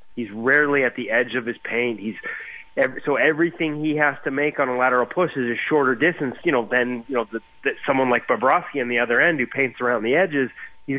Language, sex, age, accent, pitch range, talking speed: English, male, 30-49, American, 120-140 Hz, 235 wpm